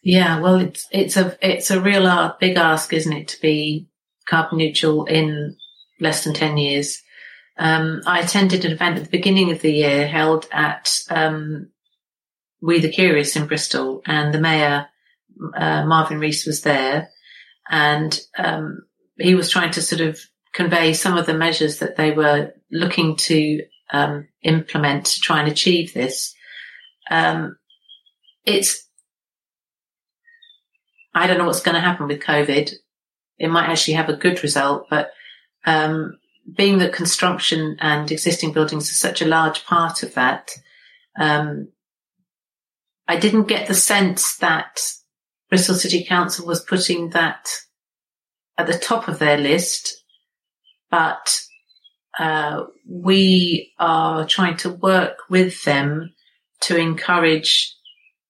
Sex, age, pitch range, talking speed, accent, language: female, 40-59, 155-180 Hz, 140 wpm, British, English